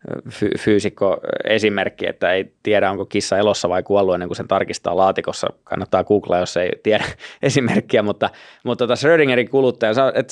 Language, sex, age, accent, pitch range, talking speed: Finnish, male, 20-39, native, 100-120 Hz, 145 wpm